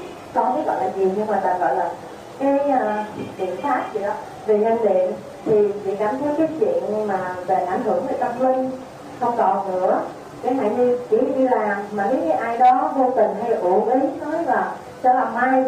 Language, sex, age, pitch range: Vietnamese, female, 20-39, 205-260 Hz